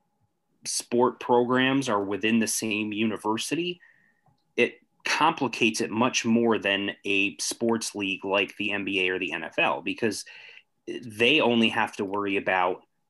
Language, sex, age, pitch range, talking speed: English, male, 30-49, 100-120 Hz, 135 wpm